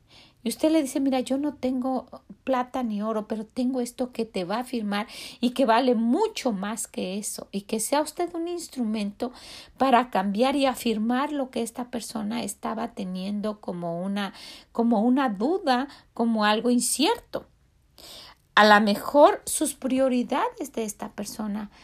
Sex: female